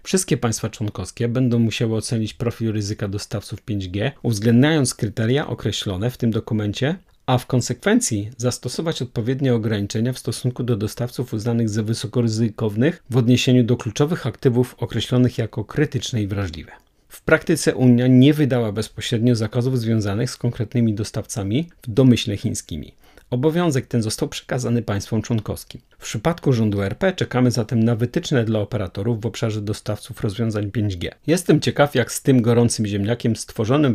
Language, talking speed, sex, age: Polish, 145 wpm, male, 40-59